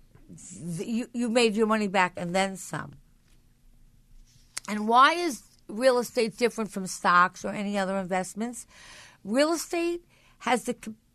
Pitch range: 205-255 Hz